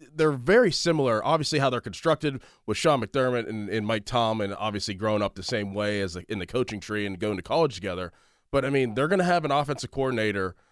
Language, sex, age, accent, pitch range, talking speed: English, male, 20-39, American, 110-150 Hz, 230 wpm